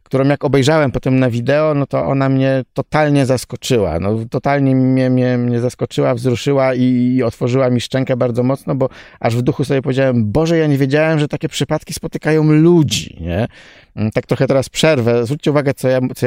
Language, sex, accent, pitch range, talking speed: Polish, male, native, 115-145 Hz, 175 wpm